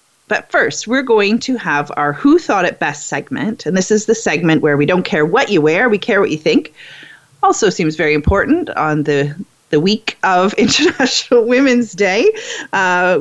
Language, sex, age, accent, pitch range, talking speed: English, female, 30-49, American, 155-220 Hz, 190 wpm